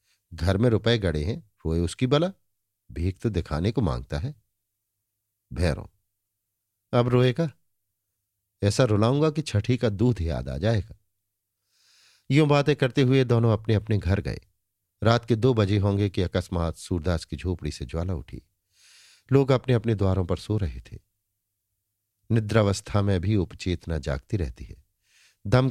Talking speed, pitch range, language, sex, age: 150 wpm, 90-110 Hz, Hindi, male, 50-69